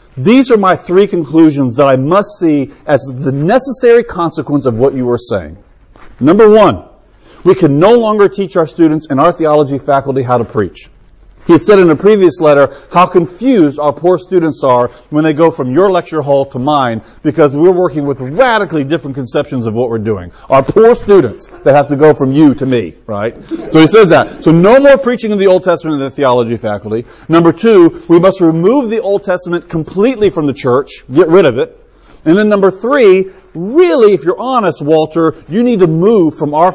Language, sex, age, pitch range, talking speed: English, male, 40-59, 135-190 Hz, 205 wpm